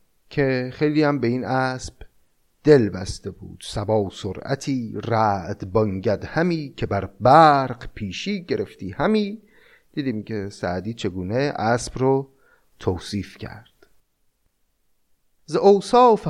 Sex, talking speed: male, 115 wpm